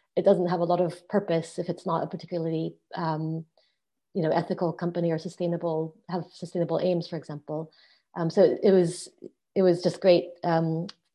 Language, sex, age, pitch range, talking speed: English, female, 30-49, 165-180 Hz, 180 wpm